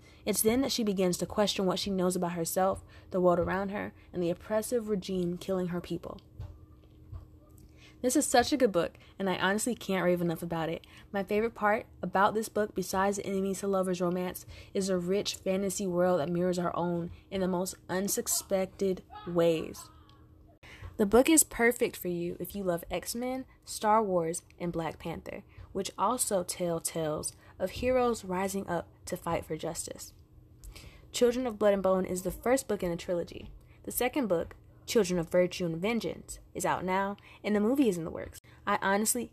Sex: female